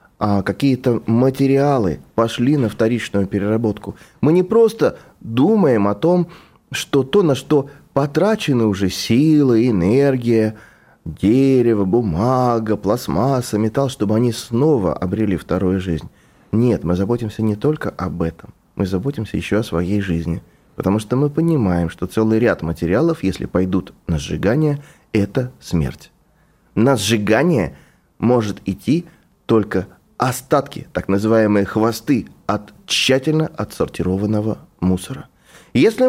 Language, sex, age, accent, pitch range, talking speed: Russian, male, 20-39, native, 95-140 Hz, 120 wpm